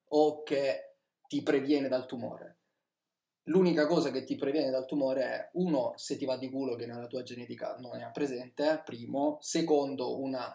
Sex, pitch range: male, 125-155 Hz